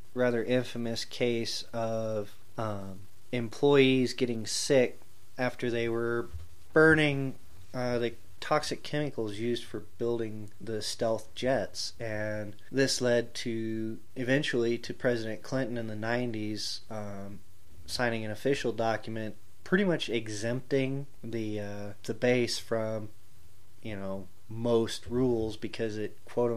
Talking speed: 120 wpm